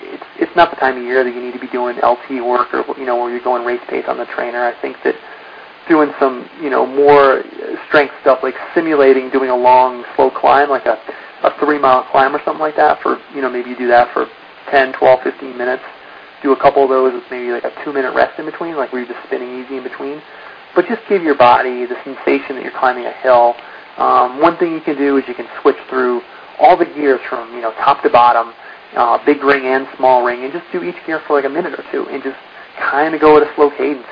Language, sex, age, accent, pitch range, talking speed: English, male, 30-49, American, 125-145 Hz, 250 wpm